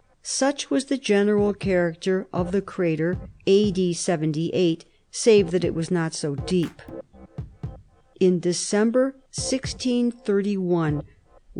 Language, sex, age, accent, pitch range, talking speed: English, female, 50-69, American, 175-205 Hz, 105 wpm